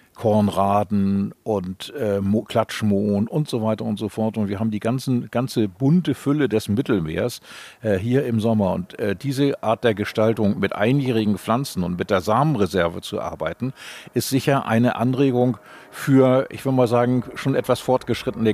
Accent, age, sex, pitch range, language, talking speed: German, 50-69, male, 100-120 Hz, German, 170 wpm